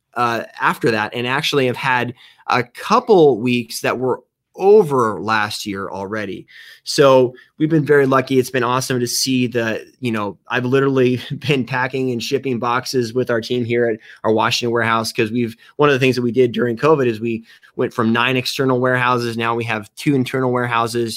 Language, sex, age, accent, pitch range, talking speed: English, male, 20-39, American, 115-135 Hz, 195 wpm